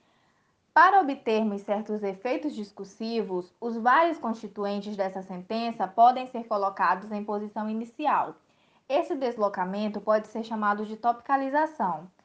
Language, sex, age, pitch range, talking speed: Portuguese, female, 20-39, 210-265 Hz, 115 wpm